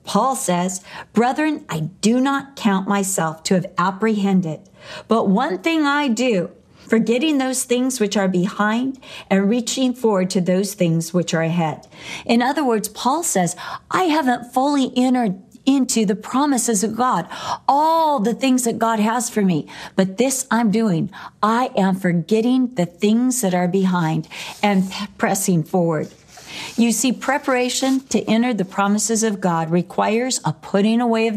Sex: female